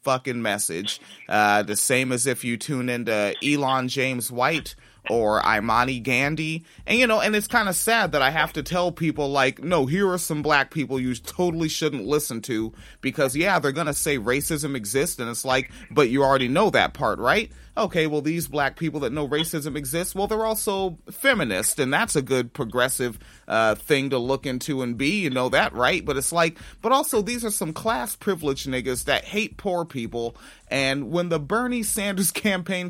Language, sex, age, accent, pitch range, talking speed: English, male, 30-49, American, 130-180 Hz, 195 wpm